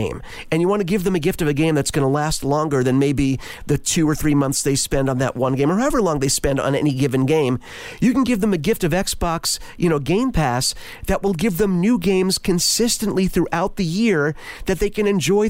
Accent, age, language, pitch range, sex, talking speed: American, 40-59, English, 135-180 Hz, male, 250 wpm